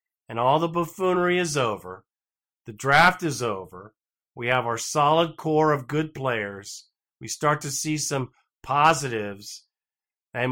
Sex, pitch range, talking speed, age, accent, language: male, 125-170 Hz, 145 wpm, 50-69, American, English